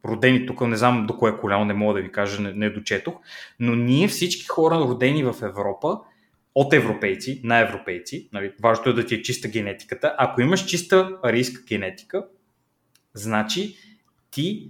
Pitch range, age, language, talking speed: 115-165 Hz, 20-39, Bulgarian, 165 wpm